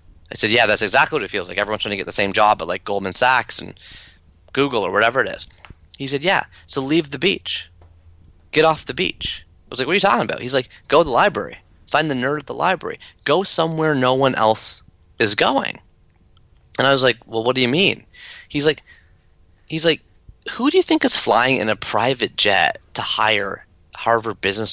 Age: 30-49